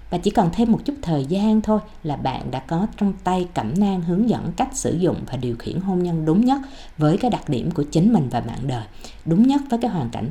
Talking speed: 260 wpm